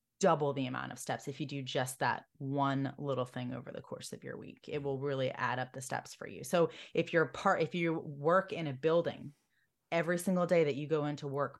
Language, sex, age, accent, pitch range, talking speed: English, female, 20-39, American, 140-170 Hz, 240 wpm